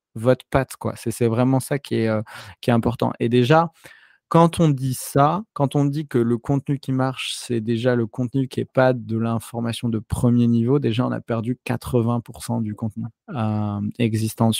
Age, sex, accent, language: 20-39, male, French, French